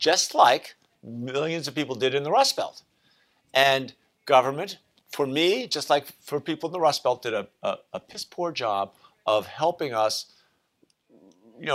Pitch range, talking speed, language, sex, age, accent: 120-165 Hz, 165 wpm, English, male, 50-69, American